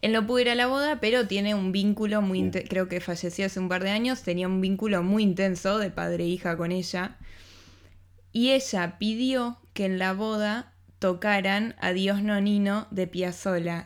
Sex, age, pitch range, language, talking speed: female, 10-29, 180-210 Hz, Spanish, 195 wpm